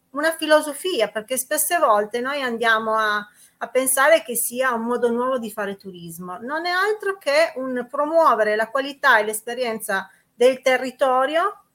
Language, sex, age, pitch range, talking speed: Italian, female, 40-59, 215-270 Hz, 155 wpm